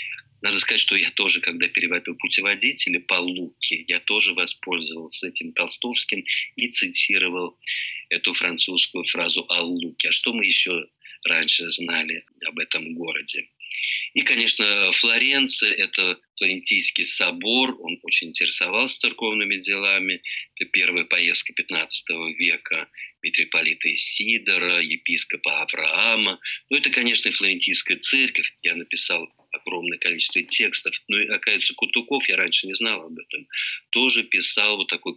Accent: native